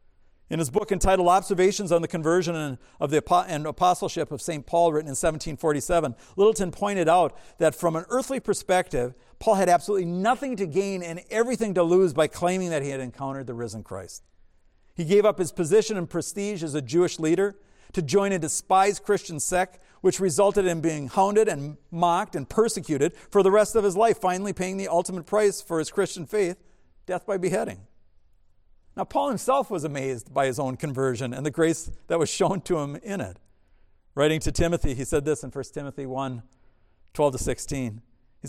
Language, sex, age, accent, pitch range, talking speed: English, male, 50-69, American, 135-185 Hz, 190 wpm